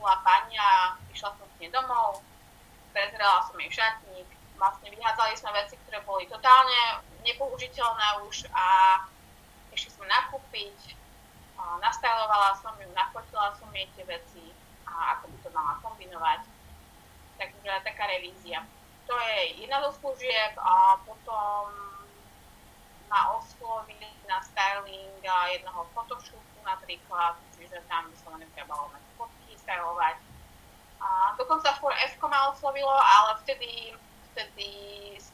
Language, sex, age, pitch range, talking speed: Slovak, female, 20-39, 200-265 Hz, 115 wpm